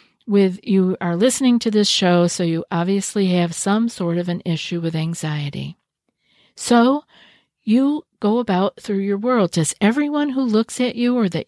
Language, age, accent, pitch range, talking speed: English, 50-69, American, 170-225 Hz, 175 wpm